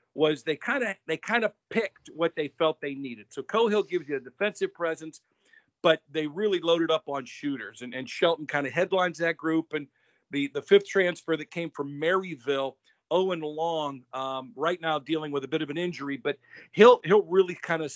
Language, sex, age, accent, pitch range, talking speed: English, male, 50-69, American, 140-180 Hz, 205 wpm